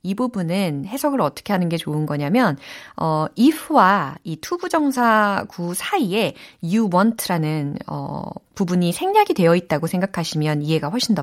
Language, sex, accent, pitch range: Korean, female, native, 165-265 Hz